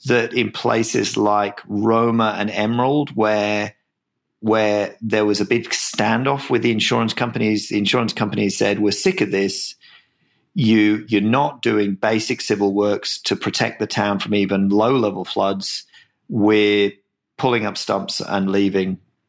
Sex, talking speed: male, 145 wpm